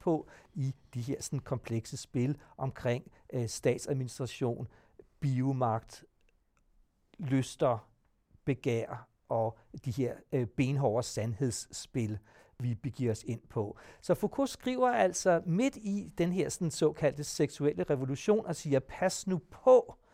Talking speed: 105 wpm